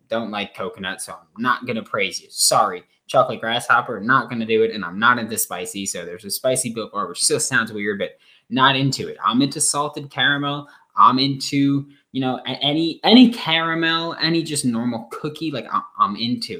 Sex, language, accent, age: male, English, American, 20-39